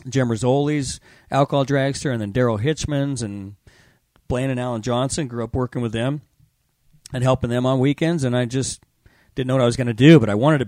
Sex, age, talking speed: male, 40-59, 215 wpm